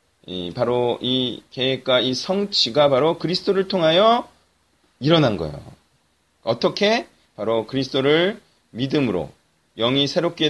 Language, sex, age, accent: Korean, male, 30-49, native